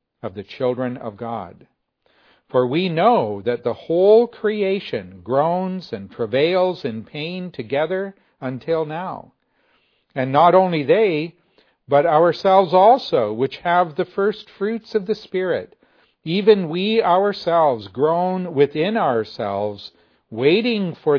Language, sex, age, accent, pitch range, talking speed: English, male, 50-69, American, 120-175 Hz, 120 wpm